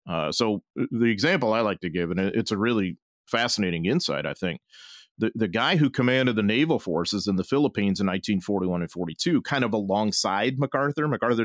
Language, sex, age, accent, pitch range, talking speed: English, male, 40-59, American, 105-140 Hz, 190 wpm